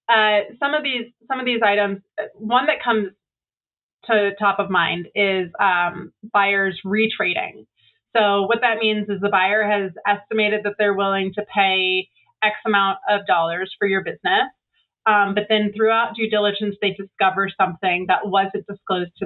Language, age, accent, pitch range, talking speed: English, 30-49, American, 190-215 Hz, 165 wpm